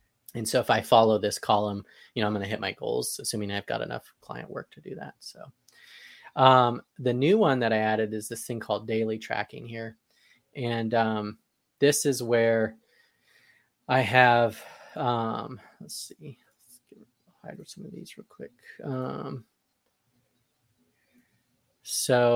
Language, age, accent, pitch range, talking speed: English, 20-39, American, 110-125 Hz, 155 wpm